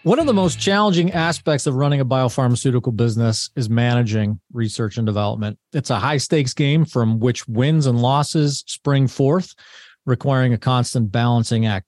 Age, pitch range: 40-59, 120-150 Hz